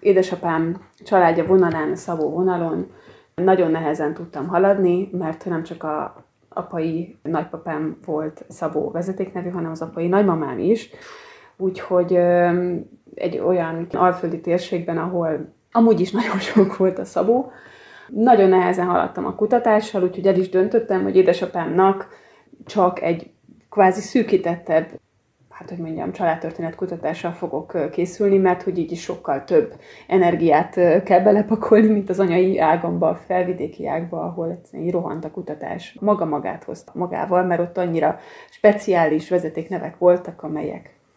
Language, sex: Hungarian, female